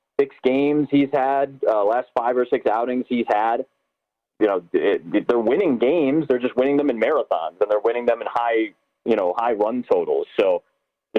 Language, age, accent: English, 30-49, American